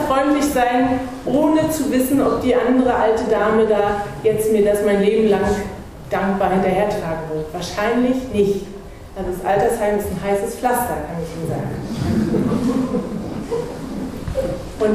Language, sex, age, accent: German, female, 30-49, German